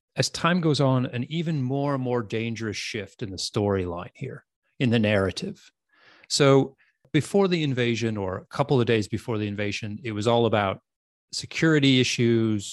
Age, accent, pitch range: 30-49, American, 110-150 Hz